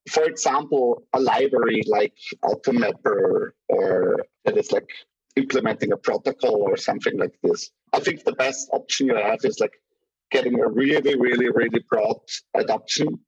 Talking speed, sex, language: 155 wpm, male, English